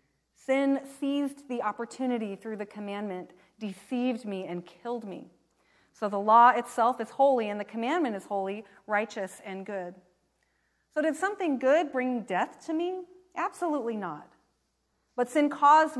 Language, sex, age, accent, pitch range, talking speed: English, female, 30-49, American, 200-245 Hz, 145 wpm